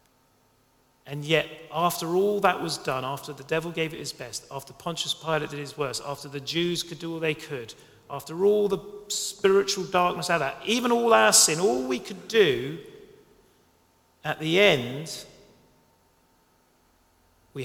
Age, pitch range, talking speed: 40-59, 120-165 Hz, 155 wpm